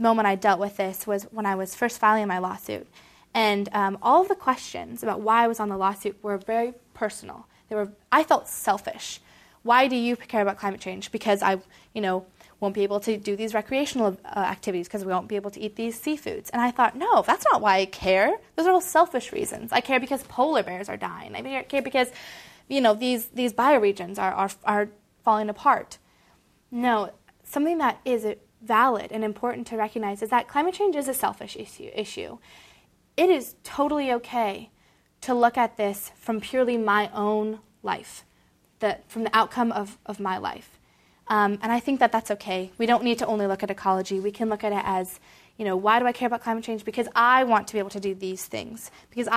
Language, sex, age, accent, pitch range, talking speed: English, female, 20-39, American, 200-245 Hz, 215 wpm